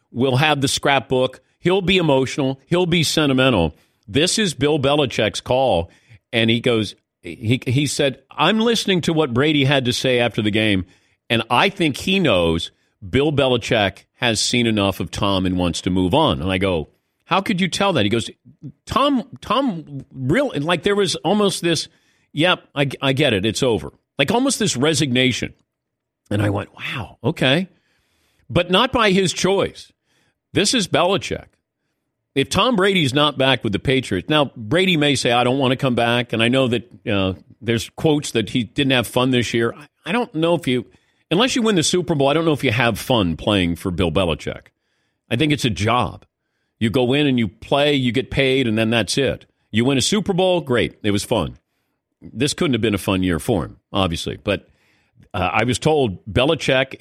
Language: English